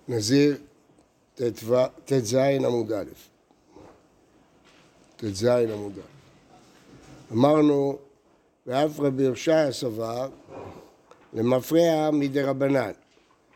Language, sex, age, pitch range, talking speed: Hebrew, male, 60-79, 130-160 Hz, 65 wpm